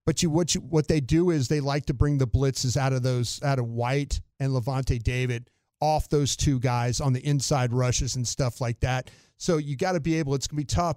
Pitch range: 125-150 Hz